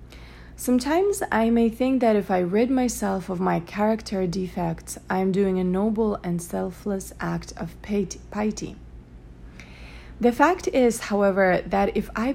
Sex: female